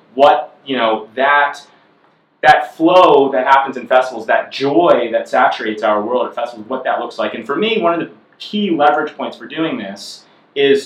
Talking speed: 195 wpm